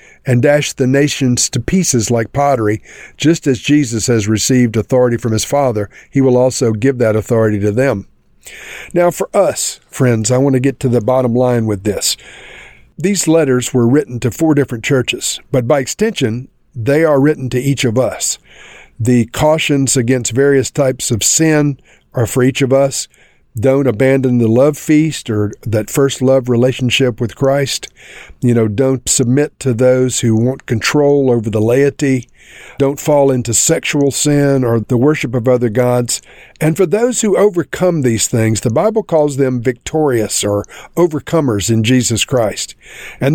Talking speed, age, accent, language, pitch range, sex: 170 wpm, 50-69, American, English, 120-145 Hz, male